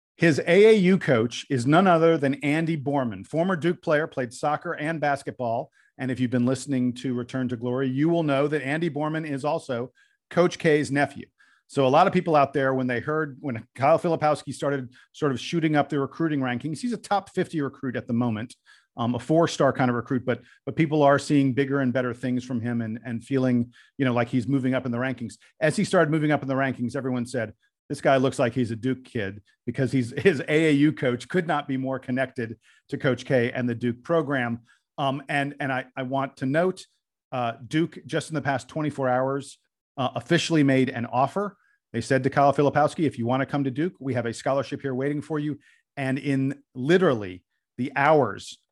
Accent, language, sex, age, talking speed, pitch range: American, English, male, 40-59, 215 wpm, 125-150 Hz